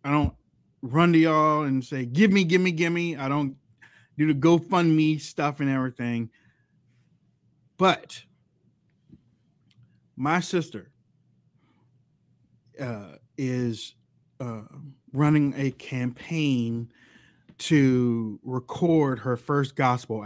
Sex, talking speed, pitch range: male, 105 wpm, 120-150 Hz